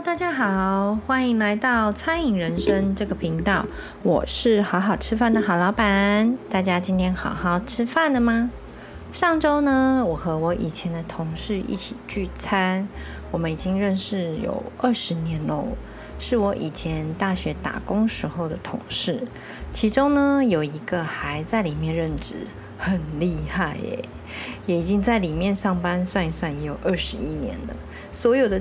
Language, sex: Chinese, female